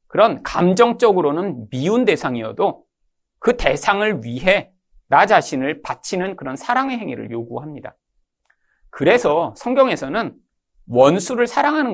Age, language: 40-59, Korean